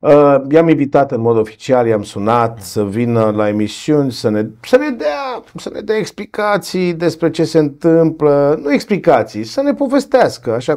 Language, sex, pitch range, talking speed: Romanian, male, 110-155 Hz, 165 wpm